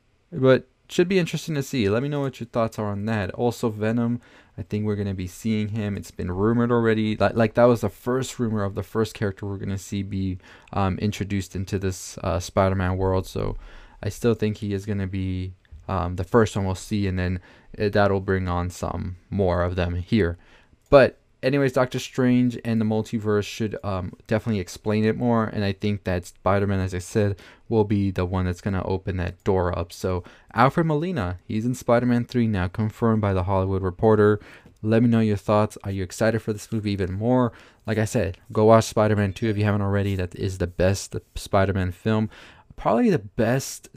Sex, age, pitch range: male, 20-39, 95-115 Hz